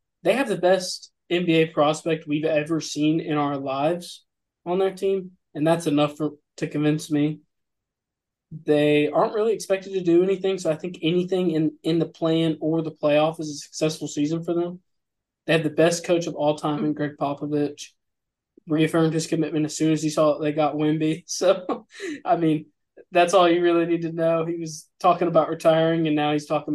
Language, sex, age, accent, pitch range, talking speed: English, male, 20-39, American, 150-170 Hz, 195 wpm